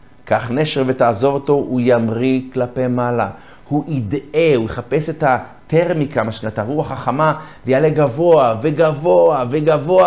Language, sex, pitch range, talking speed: Hebrew, male, 110-150 Hz, 125 wpm